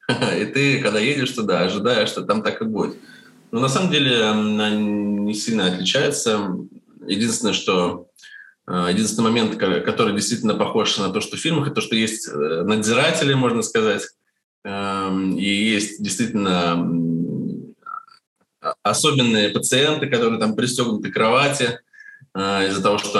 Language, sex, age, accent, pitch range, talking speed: Russian, male, 20-39, native, 95-135 Hz, 130 wpm